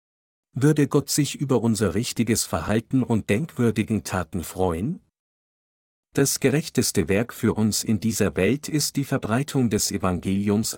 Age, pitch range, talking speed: 50-69, 95-120 Hz, 135 wpm